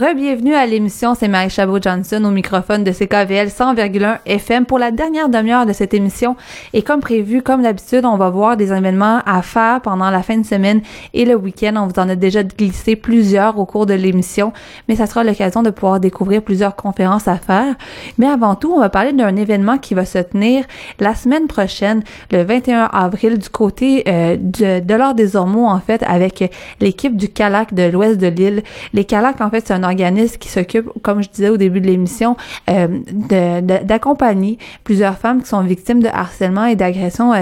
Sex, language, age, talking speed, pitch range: female, French, 30-49, 200 wpm, 190-230 Hz